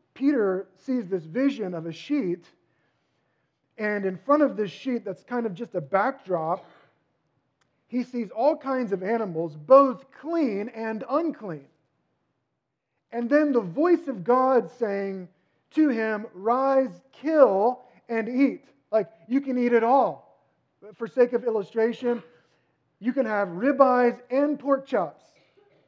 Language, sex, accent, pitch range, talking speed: English, male, American, 195-270 Hz, 140 wpm